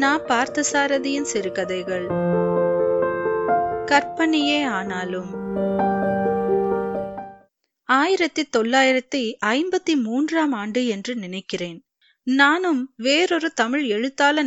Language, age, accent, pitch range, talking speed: Tamil, 30-49, native, 215-300 Hz, 60 wpm